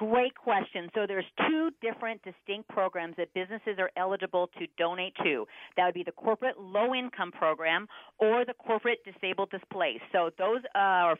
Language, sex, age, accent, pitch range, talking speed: English, female, 40-59, American, 180-225 Hz, 160 wpm